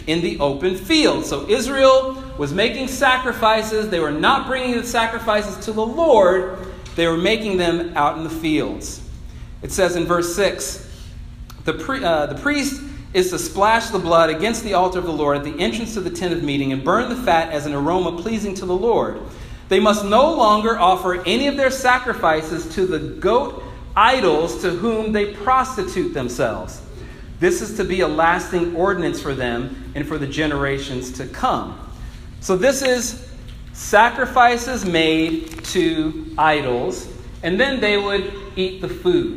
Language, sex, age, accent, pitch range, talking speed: English, male, 40-59, American, 165-230 Hz, 170 wpm